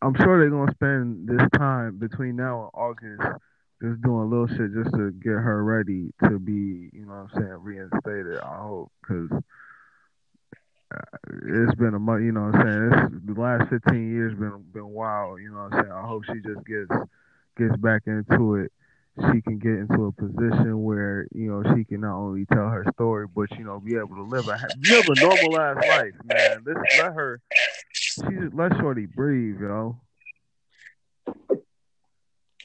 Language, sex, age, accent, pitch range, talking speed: English, male, 20-39, American, 105-125 Hz, 185 wpm